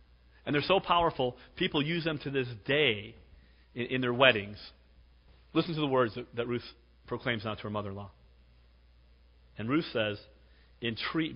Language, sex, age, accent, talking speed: English, male, 40-59, American, 160 wpm